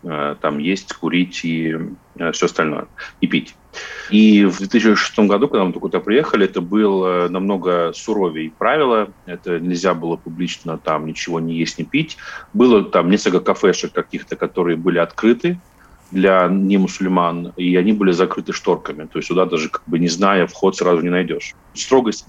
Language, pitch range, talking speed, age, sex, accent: Russian, 90-100 Hz, 165 wpm, 30-49, male, native